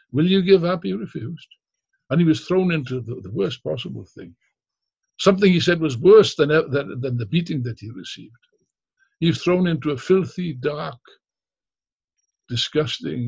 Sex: male